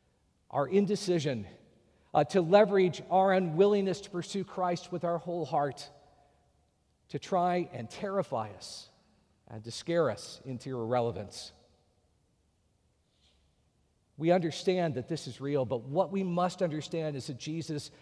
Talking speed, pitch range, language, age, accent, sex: 130 wpm, 135-185 Hz, English, 50-69, American, male